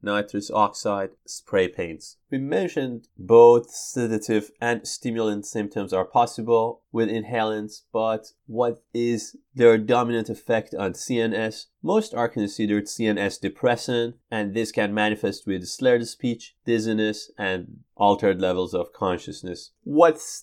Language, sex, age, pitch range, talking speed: English, male, 30-49, 100-115 Hz, 125 wpm